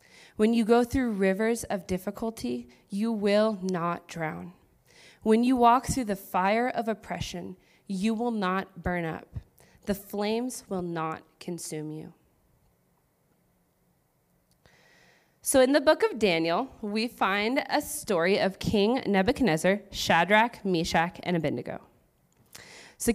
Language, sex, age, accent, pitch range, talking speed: English, female, 20-39, American, 175-235 Hz, 125 wpm